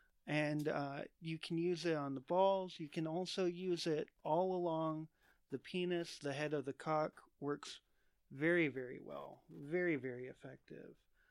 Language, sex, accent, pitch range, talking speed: English, male, American, 140-165 Hz, 160 wpm